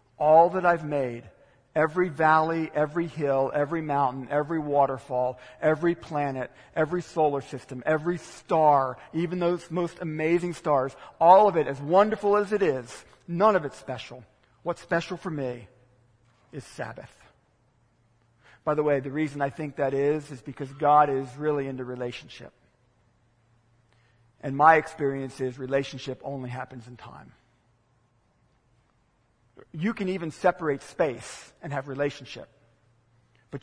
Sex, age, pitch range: male, 50-69, 125-155 Hz